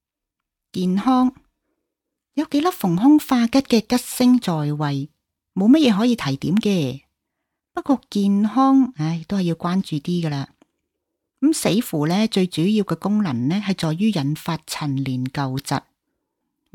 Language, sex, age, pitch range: Chinese, female, 40-59, 150-245 Hz